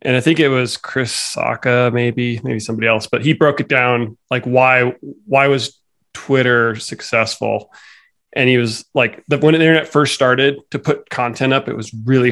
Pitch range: 120-140 Hz